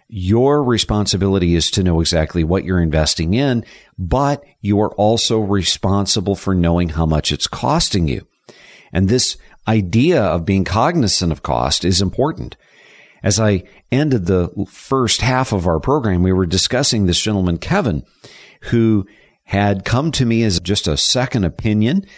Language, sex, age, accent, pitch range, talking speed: English, male, 50-69, American, 95-125 Hz, 155 wpm